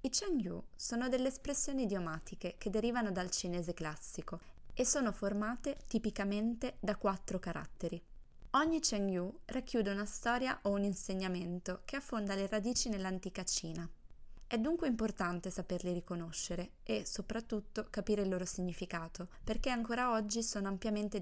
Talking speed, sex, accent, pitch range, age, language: 135 wpm, female, native, 175-225 Hz, 20-39, Italian